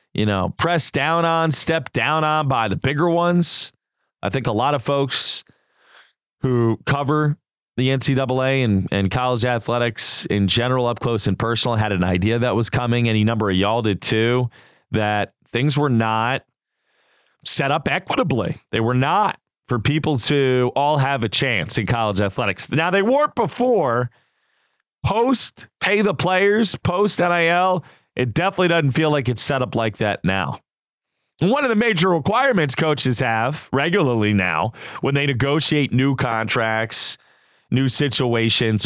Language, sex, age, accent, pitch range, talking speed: English, male, 30-49, American, 115-150 Hz, 155 wpm